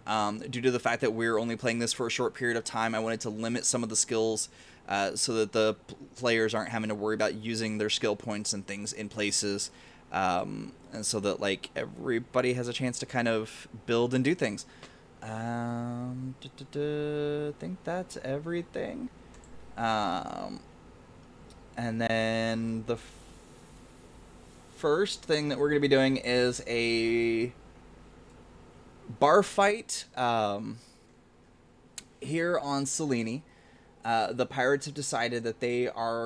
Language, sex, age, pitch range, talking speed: English, male, 20-39, 110-130 Hz, 150 wpm